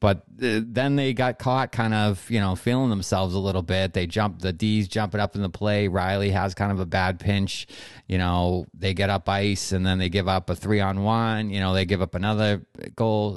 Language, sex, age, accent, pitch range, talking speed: English, male, 30-49, American, 90-110 Hz, 225 wpm